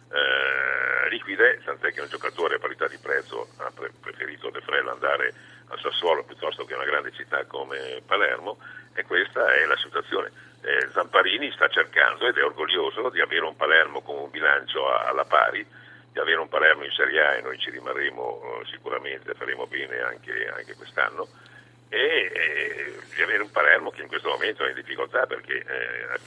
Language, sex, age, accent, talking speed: Italian, male, 60-79, native, 185 wpm